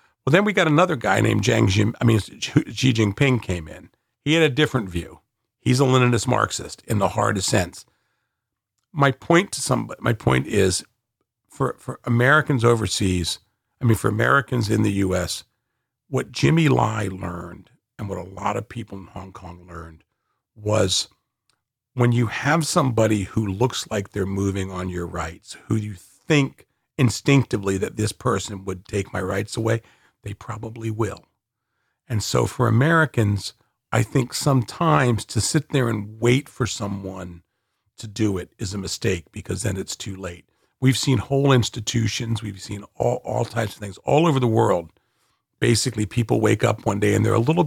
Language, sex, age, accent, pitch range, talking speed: English, male, 50-69, American, 100-125 Hz, 170 wpm